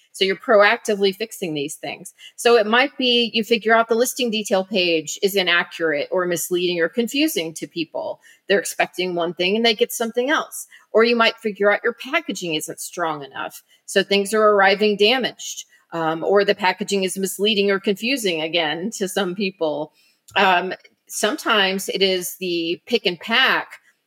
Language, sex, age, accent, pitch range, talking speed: English, female, 40-59, American, 175-225 Hz, 170 wpm